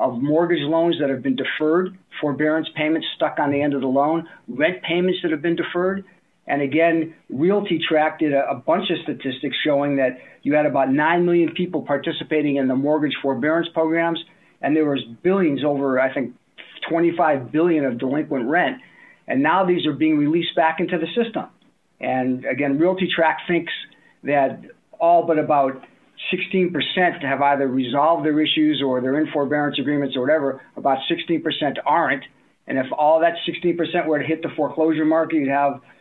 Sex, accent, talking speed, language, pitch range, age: male, American, 175 wpm, English, 140-165 Hz, 50-69